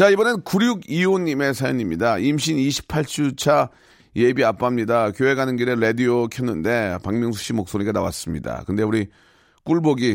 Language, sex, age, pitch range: Korean, male, 40-59, 100-125 Hz